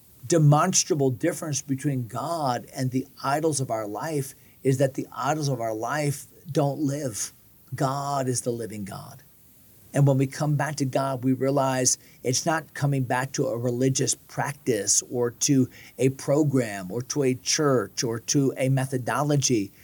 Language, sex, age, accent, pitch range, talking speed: English, male, 40-59, American, 125-150 Hz, 160 wpm